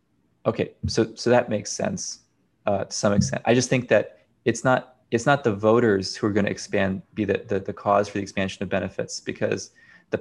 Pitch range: 95-115 Hz